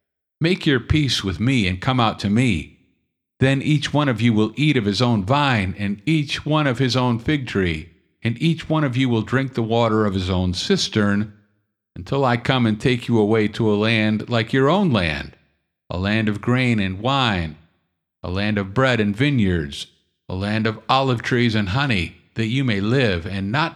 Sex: male